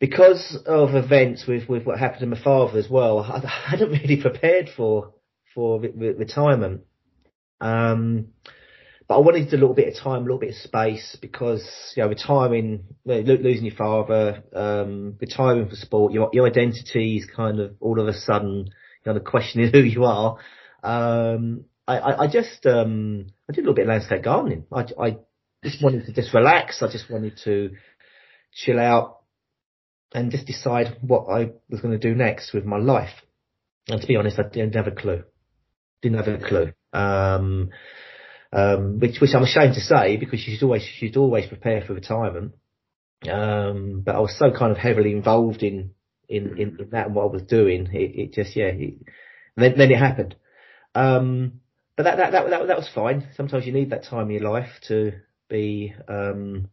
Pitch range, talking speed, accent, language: 105-125 Hz, 190 wpm, British, English